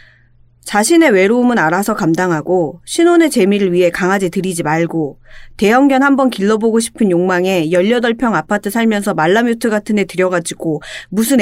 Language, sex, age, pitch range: Korean, female, 30-49, 185-250 Hz